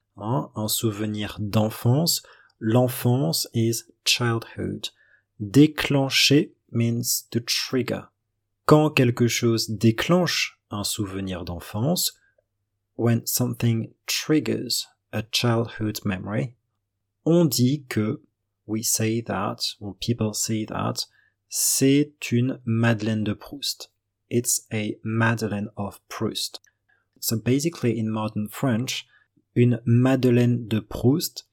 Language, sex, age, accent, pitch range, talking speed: English, male, 40-59, French, 105-125 Hz, 100 wpm